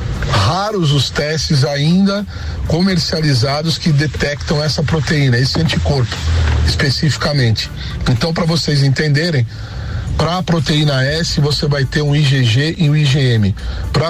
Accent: Brazilian